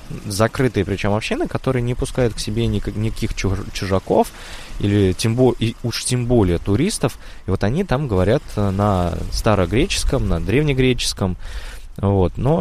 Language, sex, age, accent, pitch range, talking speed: Russian, male, 20-39, native, 95-115 Hz, 120 wpm